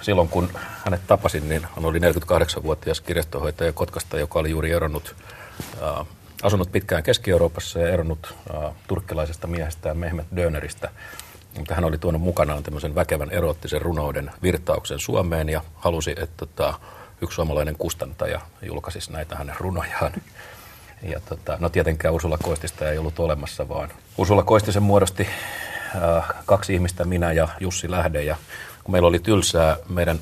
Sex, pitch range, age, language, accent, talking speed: male, 80-90 Hz, 40-59, Finnish, native, 145 wpm